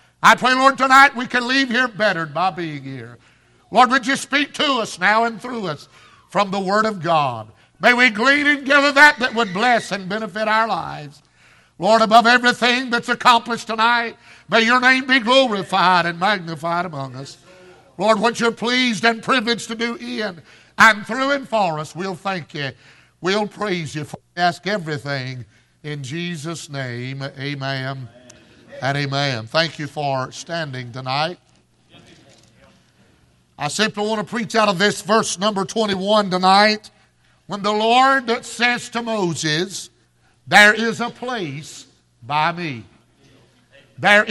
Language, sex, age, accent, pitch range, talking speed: English, male, 60-79, American, 150-230 Hz, 155 wpm